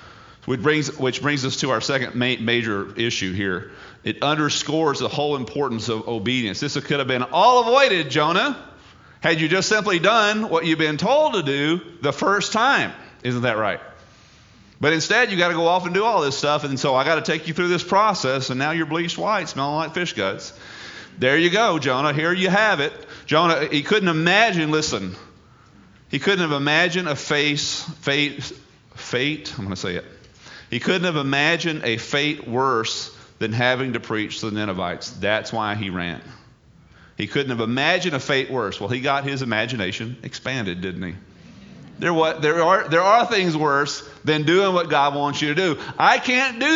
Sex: male